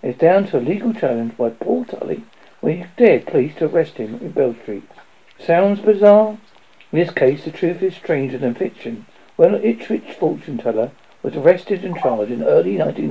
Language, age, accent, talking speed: English, 60-79, British, 190 wpm